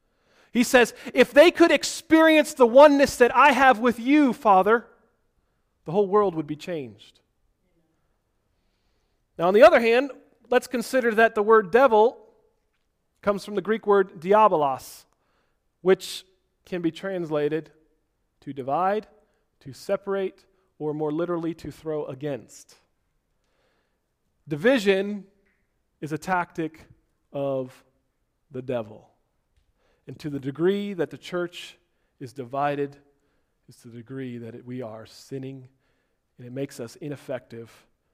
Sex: male